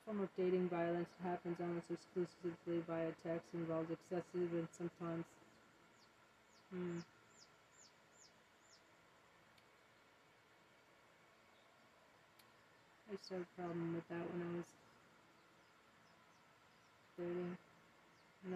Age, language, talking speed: 40-59, English, 90 wpm